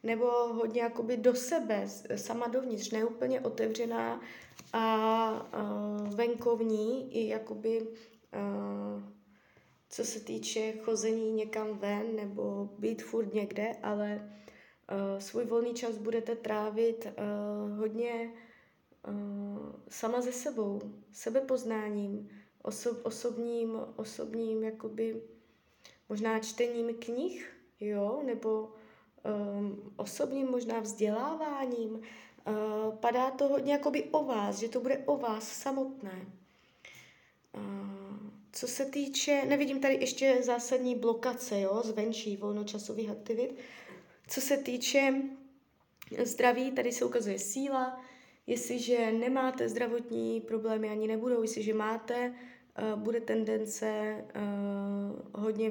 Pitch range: 210-245 Hz